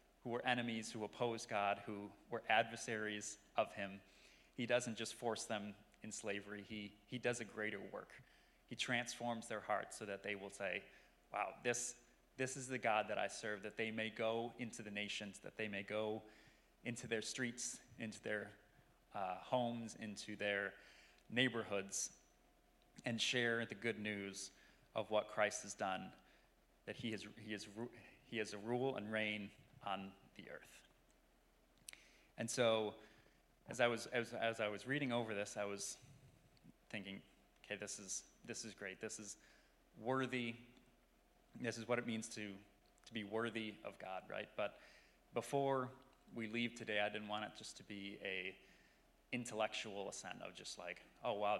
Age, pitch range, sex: 30-49, 105-120 Hz, male